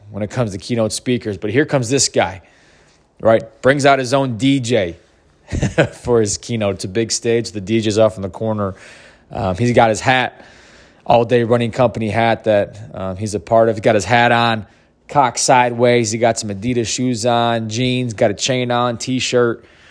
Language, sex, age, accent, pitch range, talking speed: English, male, 20-39, American, 95-120 Hz, 195 wpm